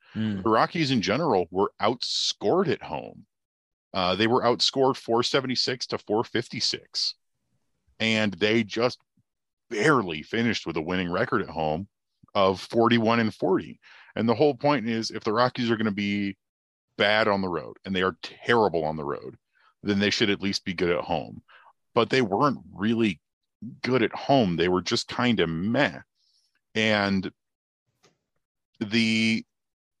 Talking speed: 155 wpm